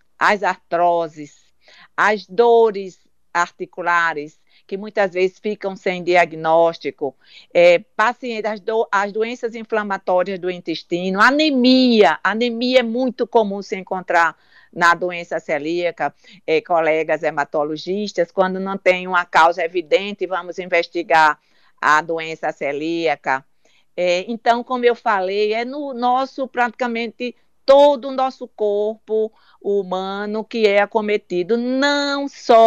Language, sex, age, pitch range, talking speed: Portuguese, female, 50-69, 175-230 Hz, 105 wpm